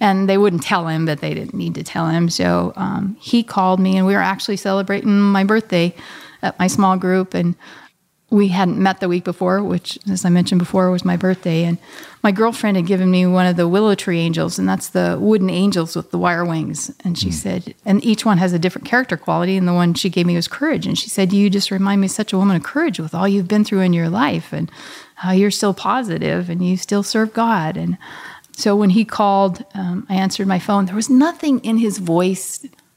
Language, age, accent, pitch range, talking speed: English, 40-59, American, 185-245 Hz, 235 wpm